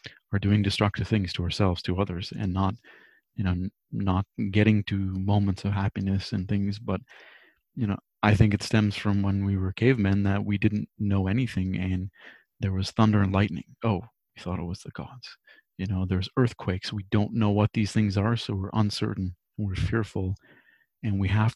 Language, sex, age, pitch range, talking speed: English, male, 30-49, 95-110 Hz, 190 wpm